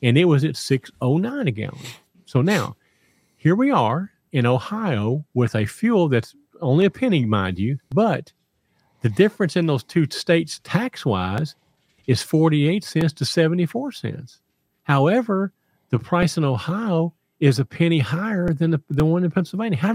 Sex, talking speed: male, 165 wpm